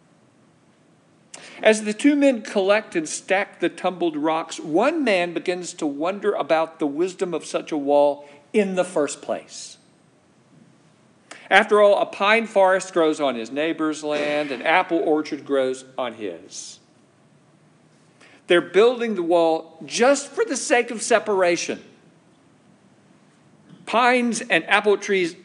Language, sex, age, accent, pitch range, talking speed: English, male, 50-69, American, 155-210 Hz, 130 wpm